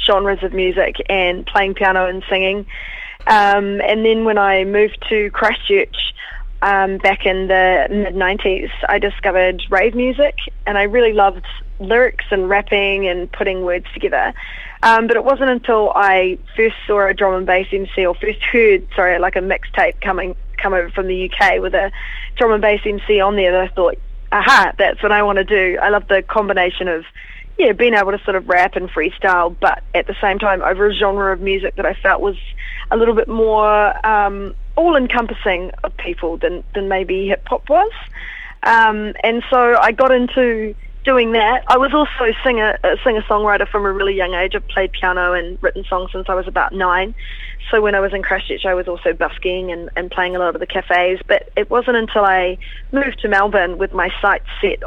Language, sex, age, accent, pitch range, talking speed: English, female, 20-39, Australian, 185-215 Hz, 200 wpm